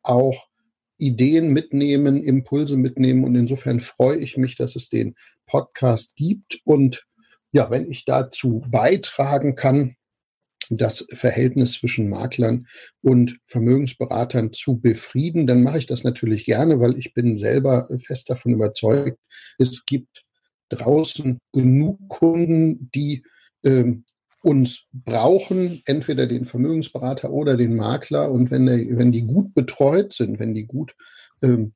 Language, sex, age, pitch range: German, male, 50-69, 120-140 Hz